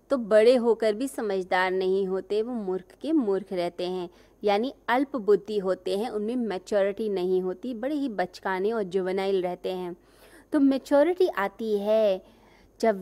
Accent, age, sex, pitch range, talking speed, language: native, 20-39, female, 190-250 Hz, 150 wpm, Hindi